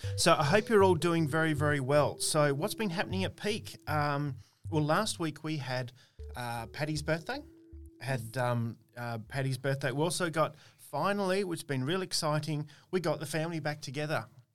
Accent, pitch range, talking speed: Australian, 115-145 Hz, 180 wpm